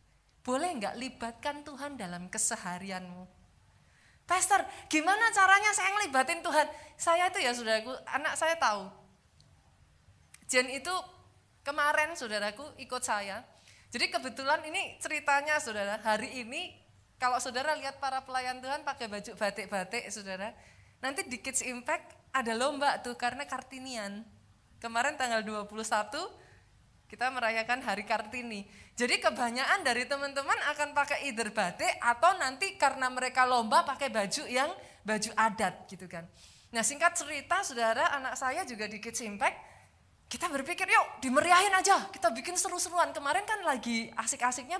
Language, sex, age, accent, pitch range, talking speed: Indonesian, female, 20-39, native, 220-300 Hz, 135 wpm